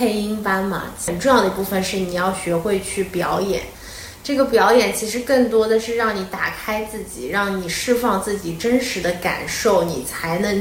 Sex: female